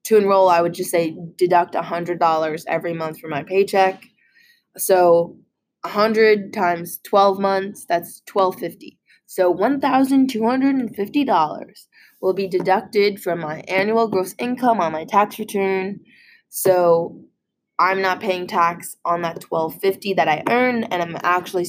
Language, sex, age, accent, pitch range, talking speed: English, female, 20-39, American, 170-210 Hz, 145 wpm